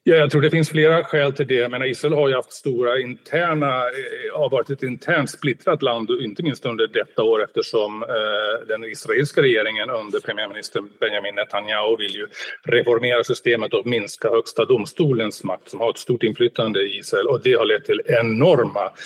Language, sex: Swedish, male